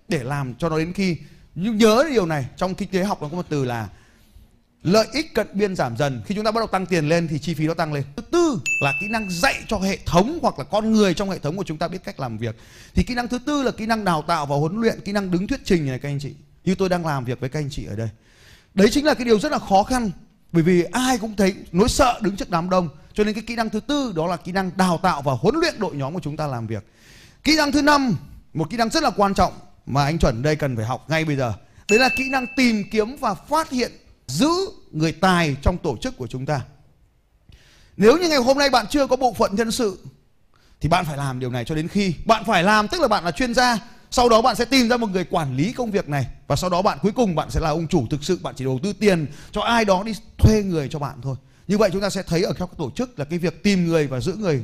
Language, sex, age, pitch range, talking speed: Vietnamese, male, 20-39, 145-220 Hz, 290 wpm